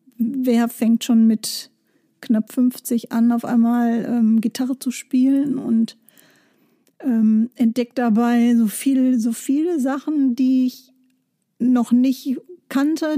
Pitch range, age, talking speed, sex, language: 230-260 Hz, 50-69, 125 wpm, female, German